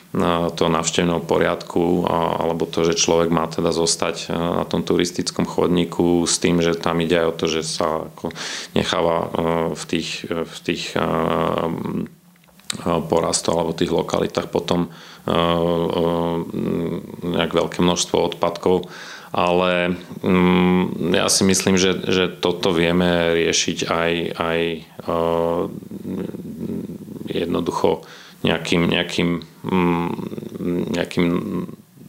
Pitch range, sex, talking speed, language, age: 85-90 Hz, male, 100 wpm, Slovak, 40-59